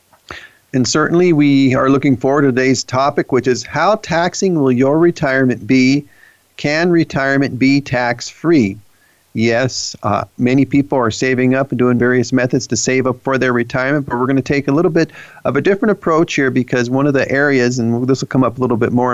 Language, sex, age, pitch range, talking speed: English, male, 40-59, 115-145 Hz, 205 wpm